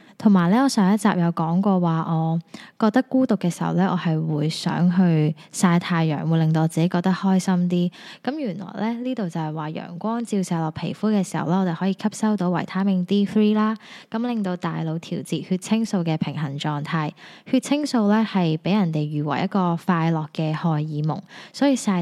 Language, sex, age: English, female, 10-29